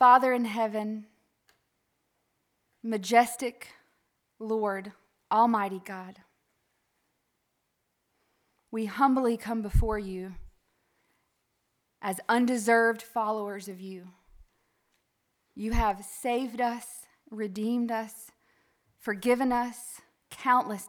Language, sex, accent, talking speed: English, female, American, 75 wpm